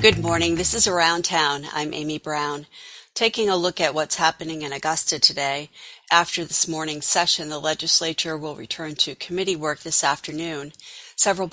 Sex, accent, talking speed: female, American, 165 wpm